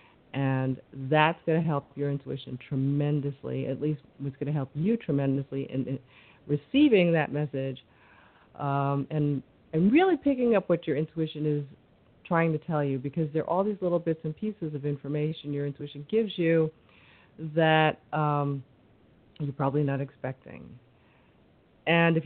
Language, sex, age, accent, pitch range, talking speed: English, female, 50-69, American, 145-165 Hz, 155 wpm